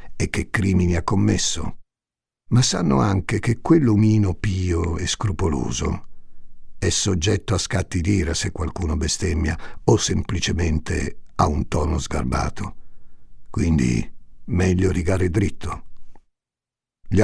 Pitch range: 90-110 Hz